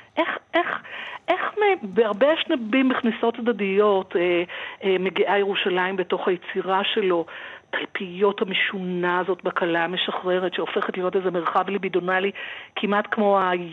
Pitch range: 195-240 Hz